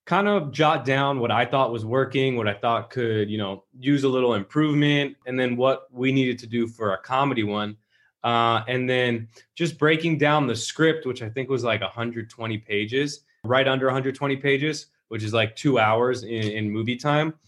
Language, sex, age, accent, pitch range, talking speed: English, male, 20-39, American, 115-140 Hz, 200 wpm